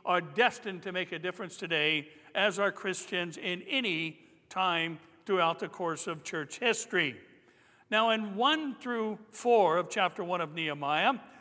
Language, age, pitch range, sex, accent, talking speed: English, 60-79, 180-235 Hz, male, American, 155 wpm